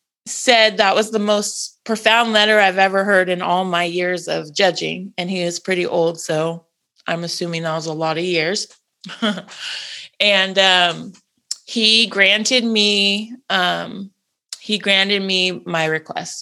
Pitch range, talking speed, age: 190-220 Hz, 150 wpm, 20-39